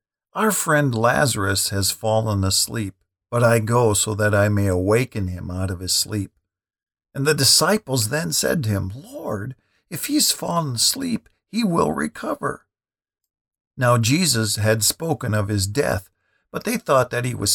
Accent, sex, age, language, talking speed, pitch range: American, male, 50-69, English, 160 wpm, 100-125 Hz